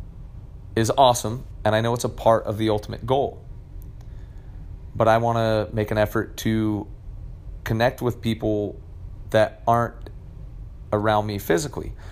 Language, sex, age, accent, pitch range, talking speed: English, male, 30-49, American, 100-115 Hz, 140 wpm